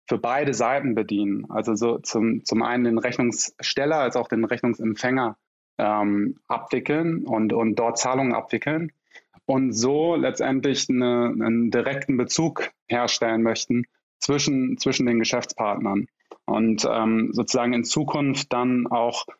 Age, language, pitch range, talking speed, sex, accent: 20-39, German, 115-135 Hz, 125 wpm, male, German